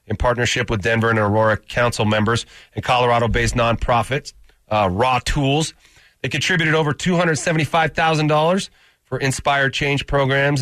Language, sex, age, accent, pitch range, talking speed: English, male, 30-49, American, 110-130 Hz, 125 wpm